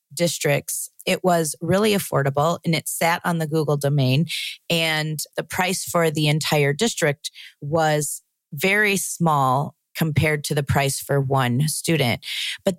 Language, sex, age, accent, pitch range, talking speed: English, female, 30-49, American, 145-180 Hz, 140 wpm